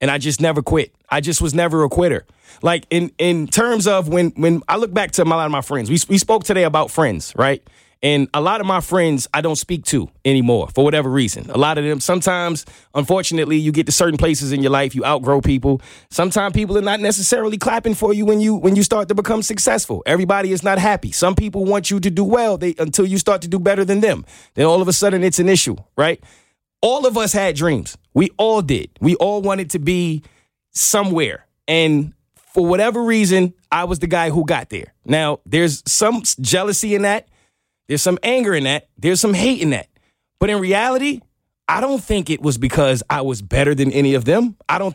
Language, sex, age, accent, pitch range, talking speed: English, male, 30-49, American, 150-205 Hz, 225 wpm